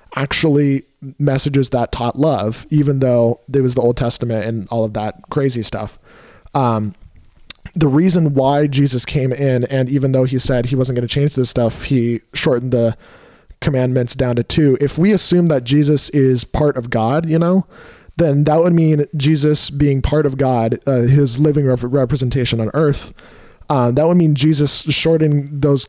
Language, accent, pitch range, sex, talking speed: English, American, 125-150 Hz, male, 180 wpm